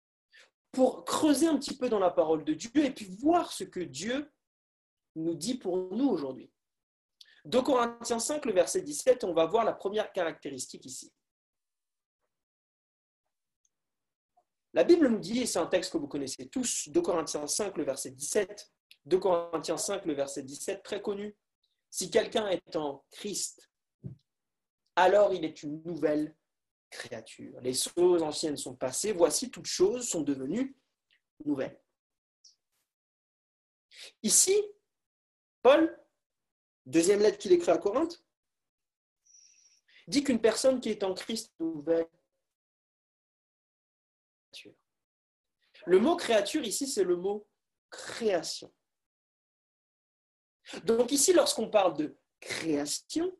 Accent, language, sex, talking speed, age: French, French, male, 130 wpm, 40-59